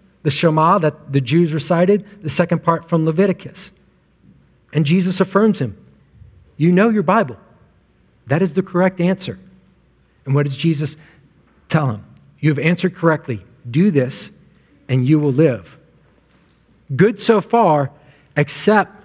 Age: 40-59